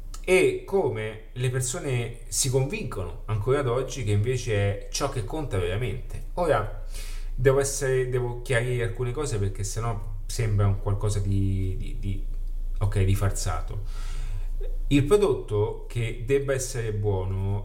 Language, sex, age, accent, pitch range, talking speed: Italian, male, 30-49, native, 100-130 Hz, 135 wpm